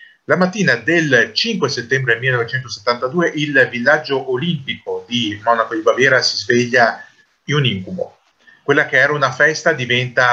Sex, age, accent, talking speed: male, 30-49, native, 140 wpm